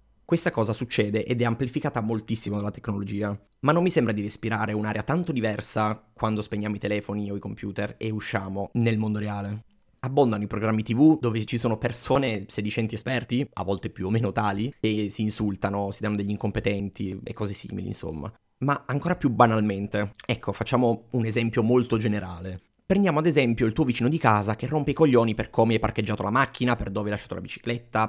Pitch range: 105-125 Hz